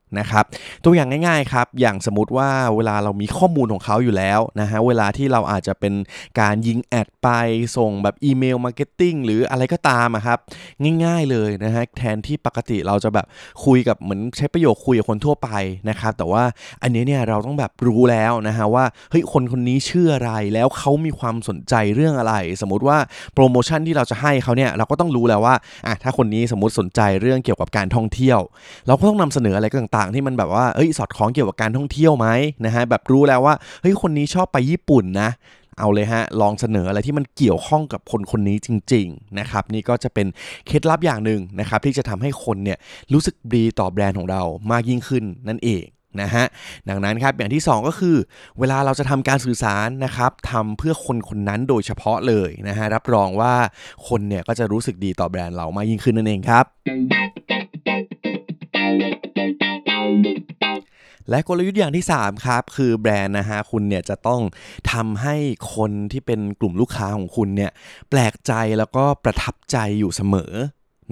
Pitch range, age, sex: 105-135 Hz, 20-39, male